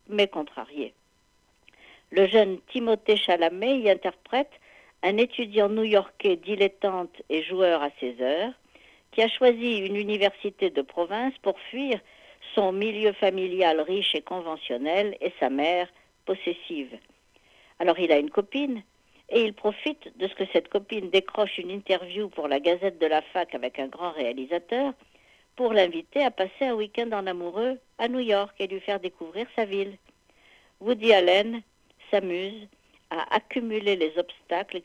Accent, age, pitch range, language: French, 60-79, 180-225 Hz, French